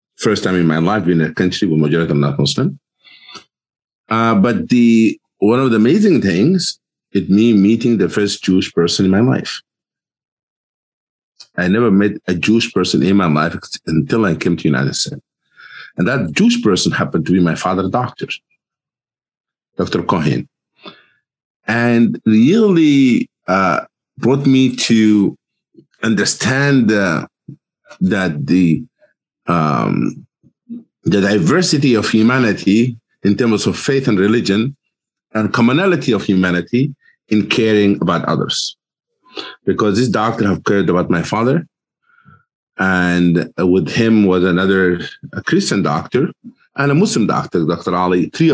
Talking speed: 135 wpm